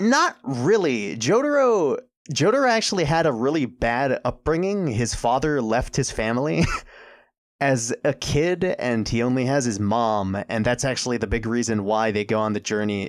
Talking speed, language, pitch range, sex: 165 wpm, English, 110-130 Hz, male